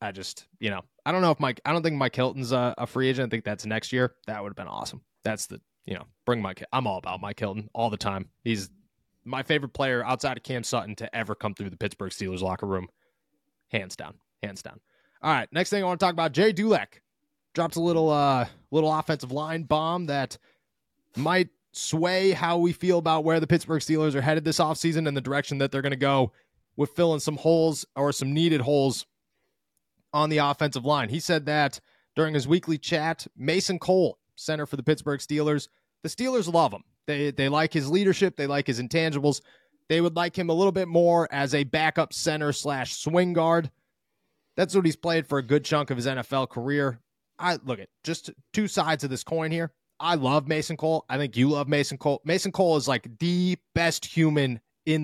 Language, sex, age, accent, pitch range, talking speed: English, male, 20-39, American, 130-165 Hz, 215 wpm